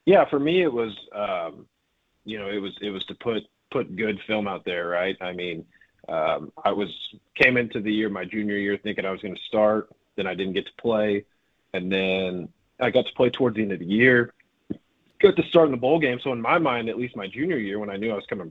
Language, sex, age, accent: English, male, 30-49, American